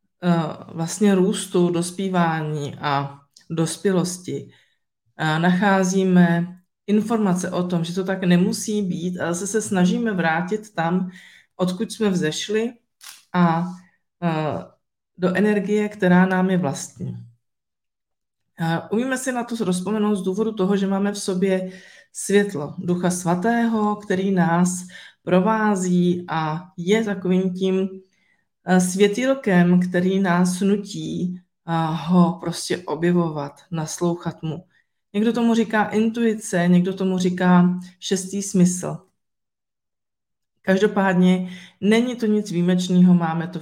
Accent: native